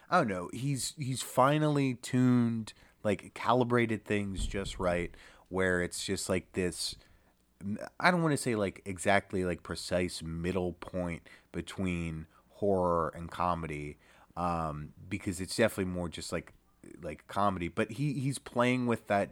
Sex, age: male, 30-49